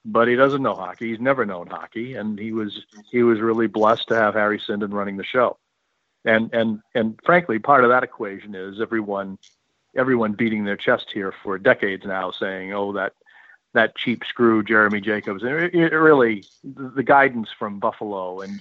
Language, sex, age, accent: English, male, 50-69, American